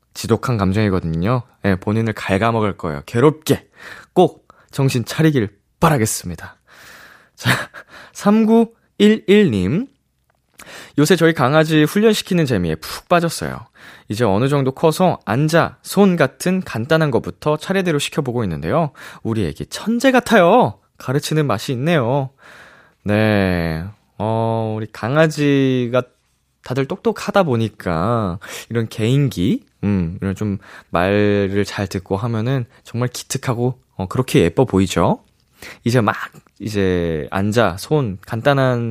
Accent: native